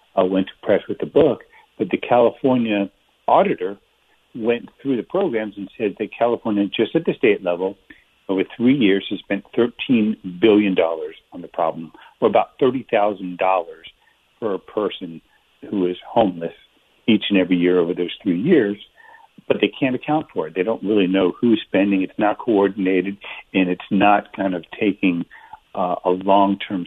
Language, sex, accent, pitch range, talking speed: English, male, American, 95-115 Hz, 165 wpm